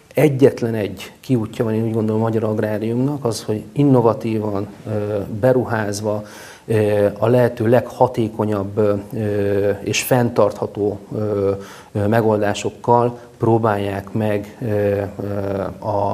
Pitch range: 105-120 Hz